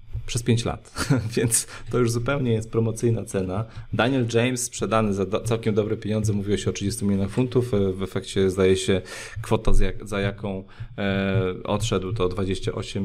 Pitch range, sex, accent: 95-120 Hz, male, native